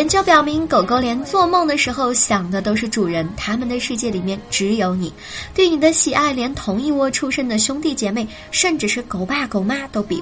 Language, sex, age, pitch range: Chinese, male, 20-39, 200-290 Hz